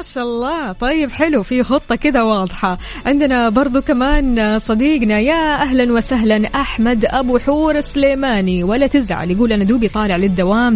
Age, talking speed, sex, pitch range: 20-39, 150 wpm, female, 190-250 Hz